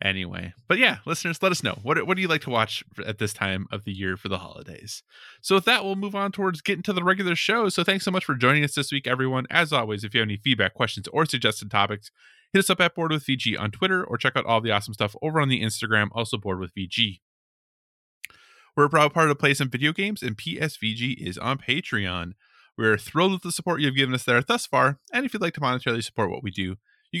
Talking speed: 255 wpm